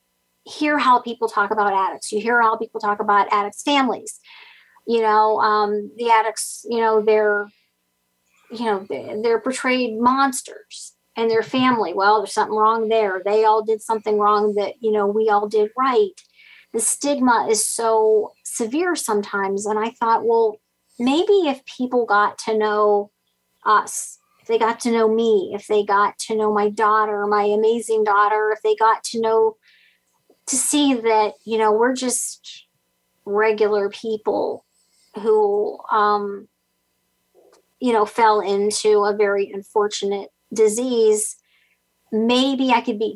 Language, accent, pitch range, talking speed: English, American, 210-240 Hz, 150 wpm